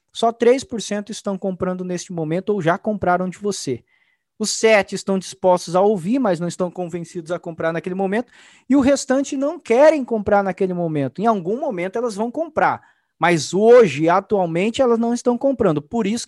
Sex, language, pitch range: male, Portuguese, 175-235 Hz